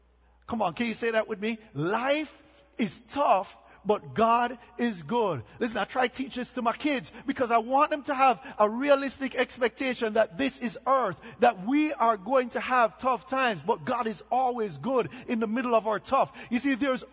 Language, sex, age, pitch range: English, male, 40-59, 235-300 Hz